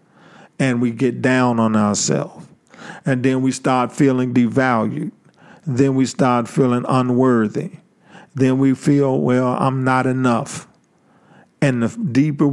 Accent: American